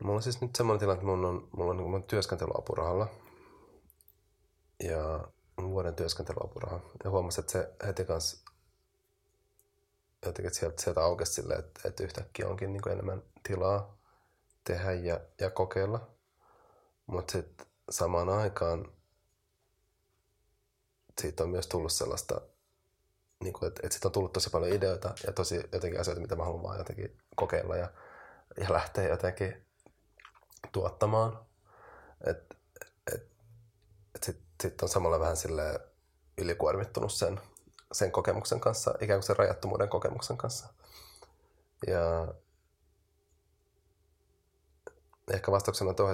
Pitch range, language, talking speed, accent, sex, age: 85-100 Hz, Finnish, 125 wpm, native, male, 30-49